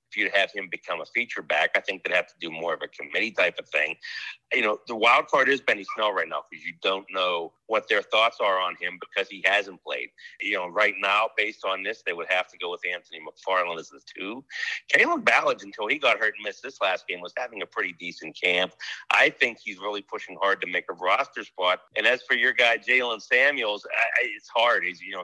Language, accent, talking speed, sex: English, American, 245 wpm, male